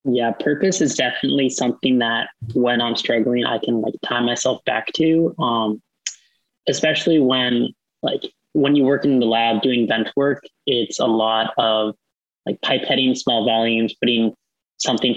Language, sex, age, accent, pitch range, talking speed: English, male, 20-39, American, 115-130 Hz, 155 wpm